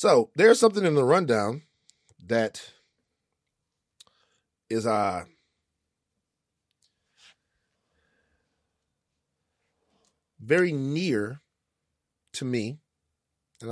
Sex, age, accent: male, 30-49, American